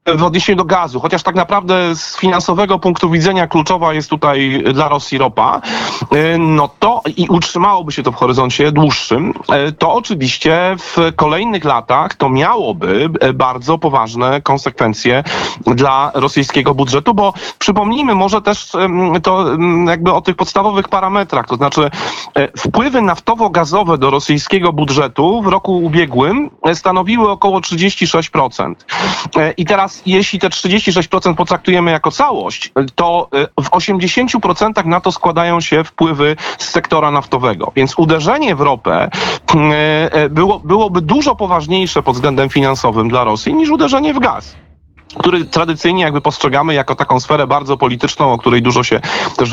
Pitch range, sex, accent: 145-190 Hz, male, native